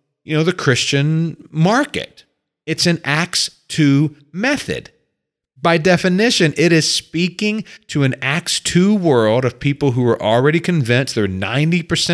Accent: American